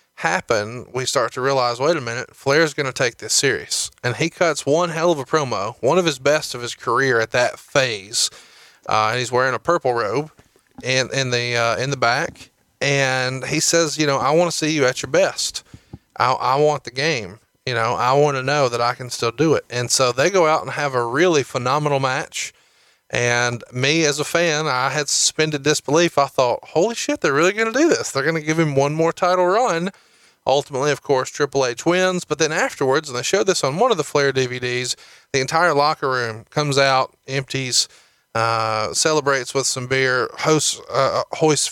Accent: American